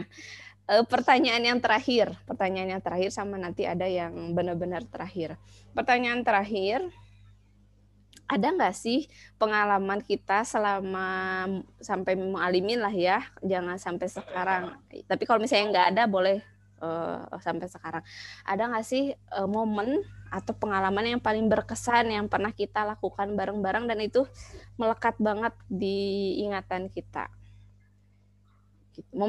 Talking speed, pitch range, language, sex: 125 wpm, 170-215 Hz, Indonesian, female